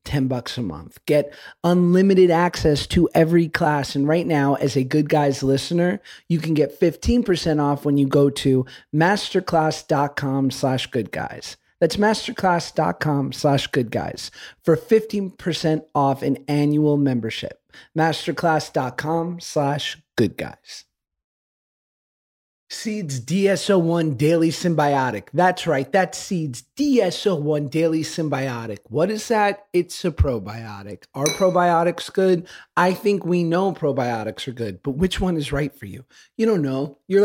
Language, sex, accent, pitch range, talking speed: English, male, American, 140-175 Hz, 140 wpm